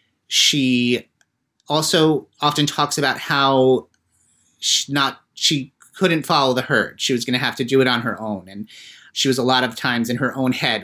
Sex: male